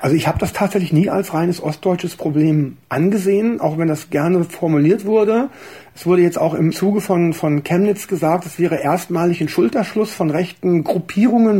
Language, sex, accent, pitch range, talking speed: German, male, German, 165-200 Hz, 180 wpm